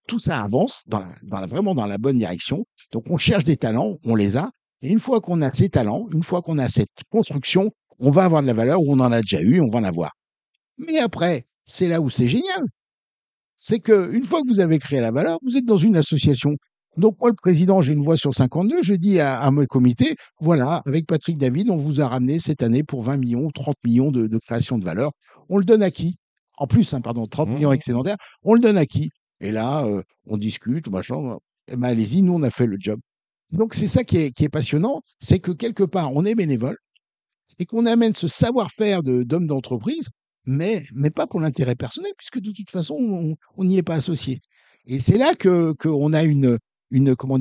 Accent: French